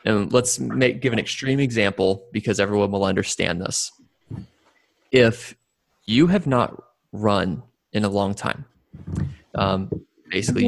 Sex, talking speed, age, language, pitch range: male, 130 wpm, 20-39, English, 100-110 Hz